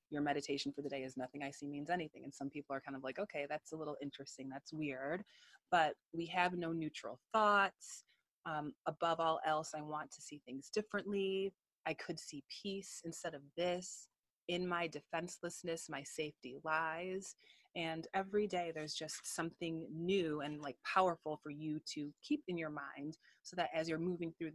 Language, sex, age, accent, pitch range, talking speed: English, female, 30-49, American, 145-175 Hz, 190 wpm